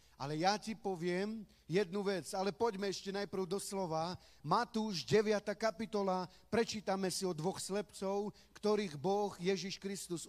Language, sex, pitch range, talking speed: Slovak, male, 175-215 Hz, 140 wpm